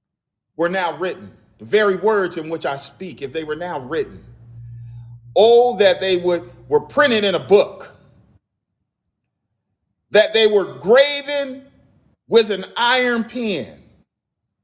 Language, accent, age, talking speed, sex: English, American, 40-59, 125 wpm, male